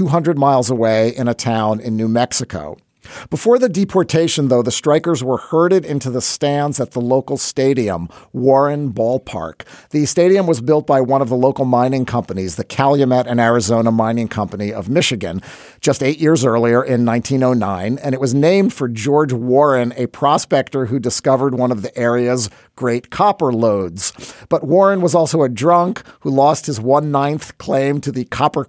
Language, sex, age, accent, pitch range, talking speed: English, male, 40-59, American, 120-150 Hz, 180 wpm